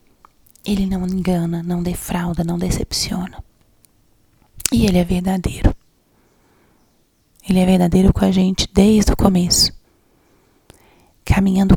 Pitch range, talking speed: 175-210 Hz, 105 wpm